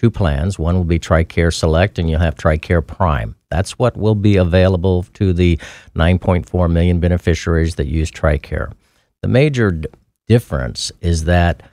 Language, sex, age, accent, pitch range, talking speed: English, male, 50-69, American, 80-95 Hz, 155 wpm